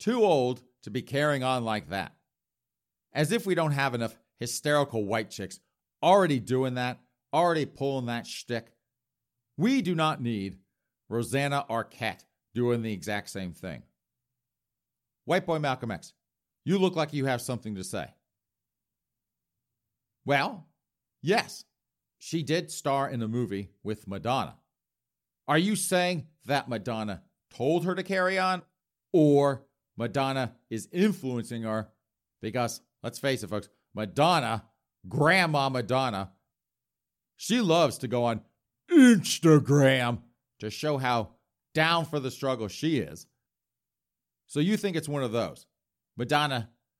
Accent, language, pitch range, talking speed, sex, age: American, English, 115-150 Hz, 130 wpm, male, 50-69